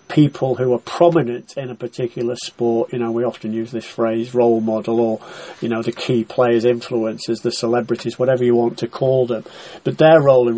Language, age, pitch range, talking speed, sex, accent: English, 40-59, 120-140 Hz, 205 wpm, male, British